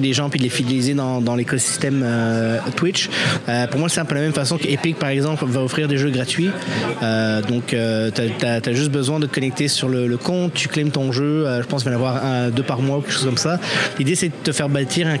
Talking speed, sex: 275 wpm, male